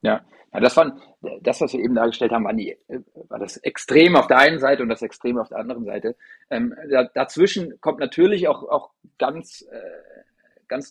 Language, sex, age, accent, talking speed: German, male, 30-49, German, 180 wpm